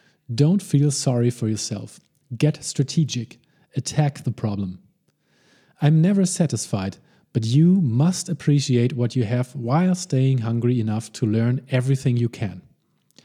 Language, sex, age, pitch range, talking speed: English, male, 40-59, 120-150 Hz, 130 wpm